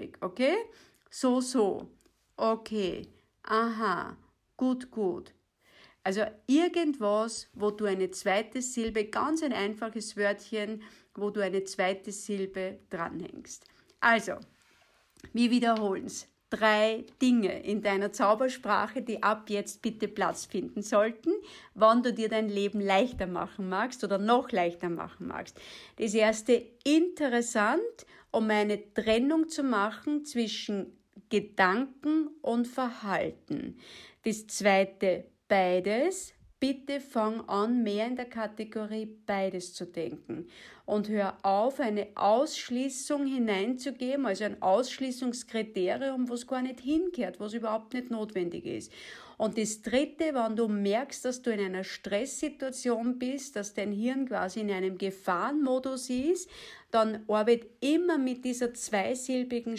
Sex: female